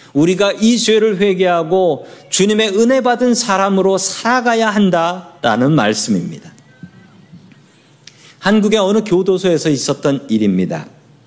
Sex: male